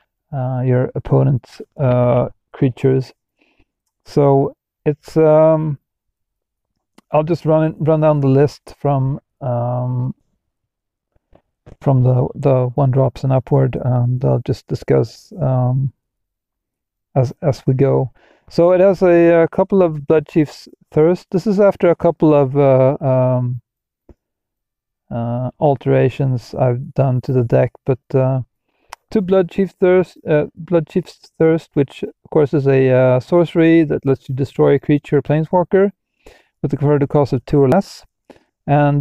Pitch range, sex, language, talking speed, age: 125-155 Hz, male, English, 135 wpm, 40-59